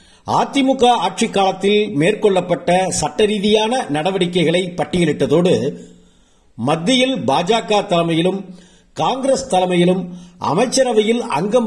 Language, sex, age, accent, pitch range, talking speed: Tamil, male, 50-69, native, 145-210 Hz, 70 wpm